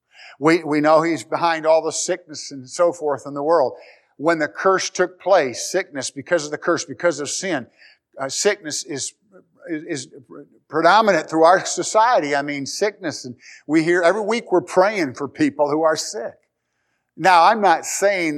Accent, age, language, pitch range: American, 50-69, English, 140-175 Hz